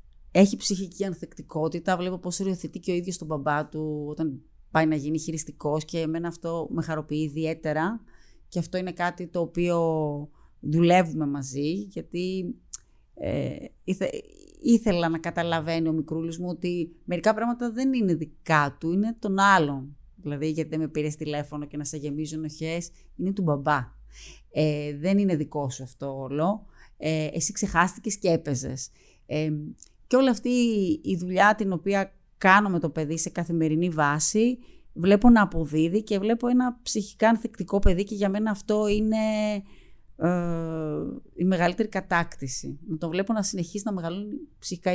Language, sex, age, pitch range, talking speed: Greek, female, 30-49, 155-205 Hz, 155 wpm